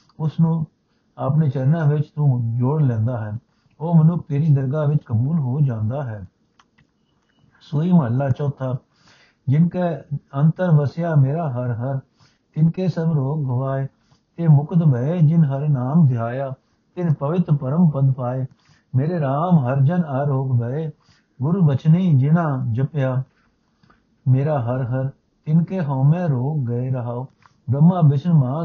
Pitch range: 130-160 Hz